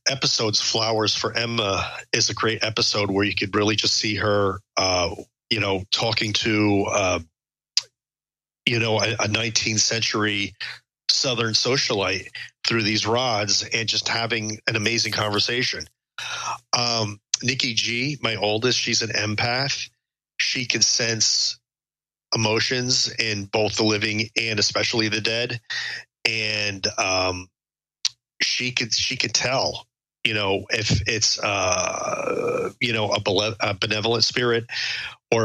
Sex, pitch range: male, 105-120 Hz